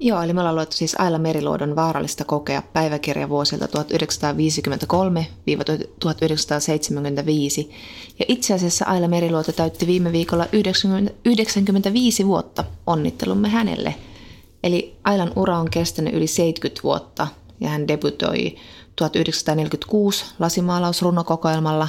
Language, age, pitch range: Finnish, 20-39, 150-175 Hz